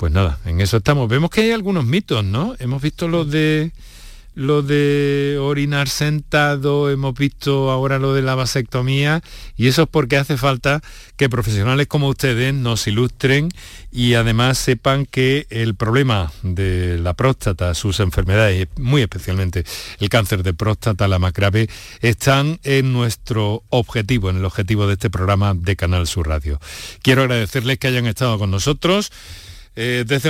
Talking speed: 160 wpm